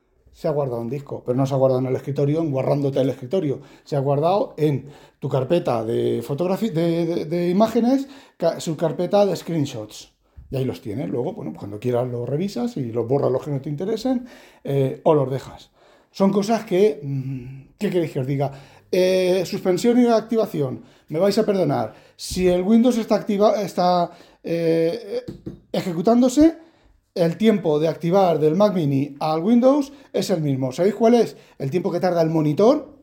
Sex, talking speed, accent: male, 180 wpm, Spanish